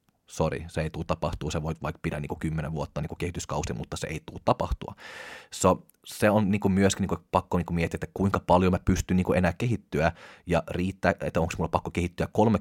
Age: 30-49